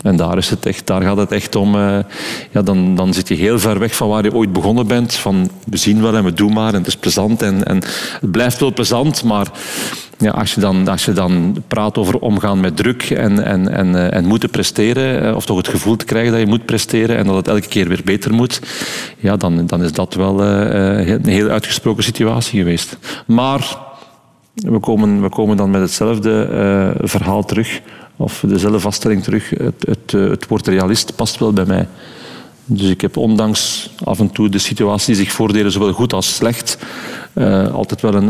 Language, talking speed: Dutch, 210 wpm